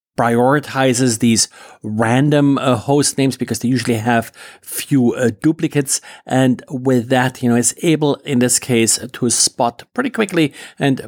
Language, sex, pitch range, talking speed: English, male, 120-145 Hz, 150 wpm